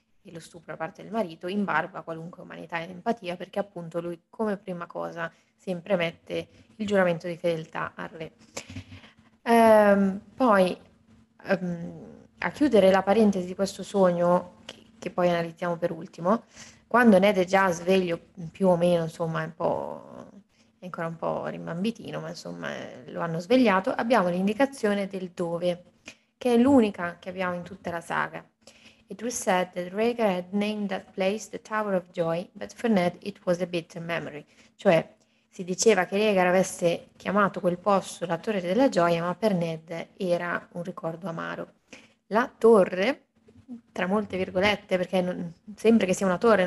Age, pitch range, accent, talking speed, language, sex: 20-39, 175-205 Hz, native, 165 wpm, Italian, female